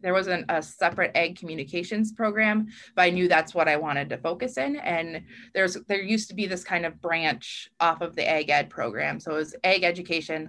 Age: 20-39